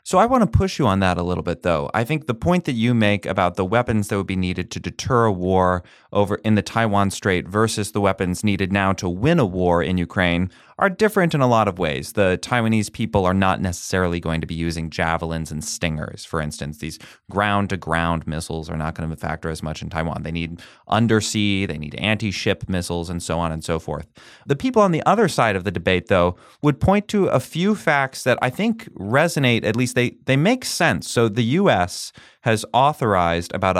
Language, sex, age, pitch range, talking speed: English, male, 30-49, 90-120 Hz, 220 wpm